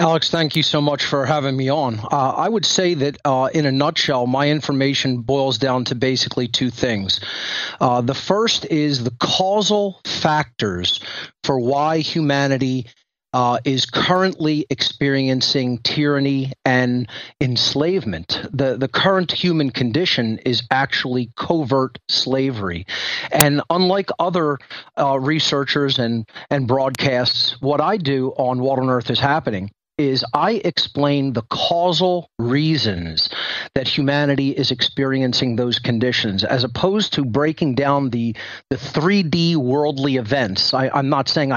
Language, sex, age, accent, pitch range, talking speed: English, male, 40-59, American, 125-155 Hz, 135 wpm